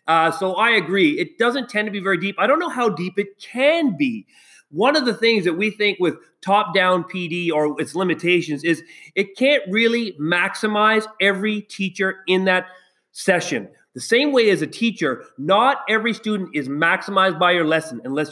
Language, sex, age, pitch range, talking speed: English, male, 30-49, 190-270 Hz, 185 wpm